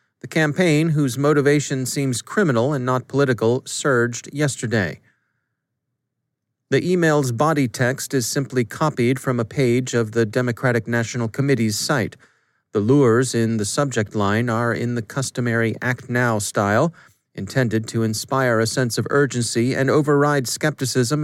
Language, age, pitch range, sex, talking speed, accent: English, 30-49, 115-150 Hz, male, 140 wpm, American